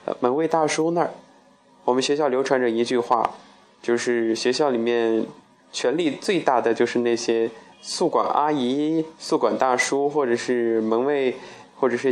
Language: Chinese